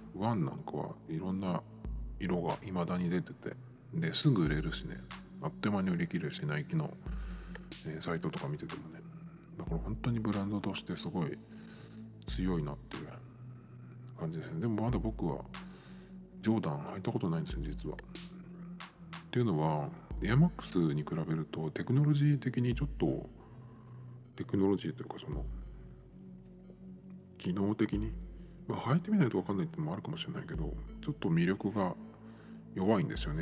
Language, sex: Japanese, male